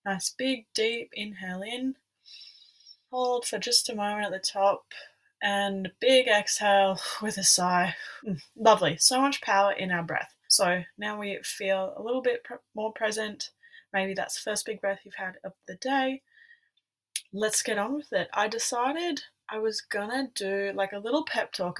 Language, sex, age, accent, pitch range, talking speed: English, female, 20-39, Australian, 180-230 Hz, 175 wpm